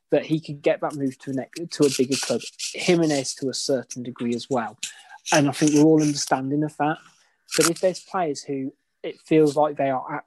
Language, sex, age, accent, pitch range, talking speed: English, male, 20-39, British, 145-170 Hz, 240 wpm